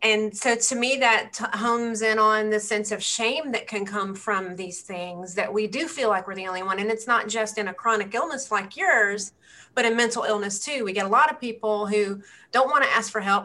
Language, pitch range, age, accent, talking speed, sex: English, 205-240 Hz, 30-49, American, 240 wpm, female